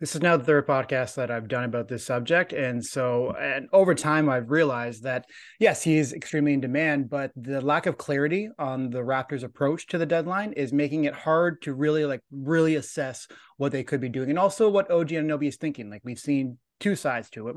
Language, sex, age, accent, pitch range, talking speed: English, male, 30-49, American, 130-160 Hz, 230 wpm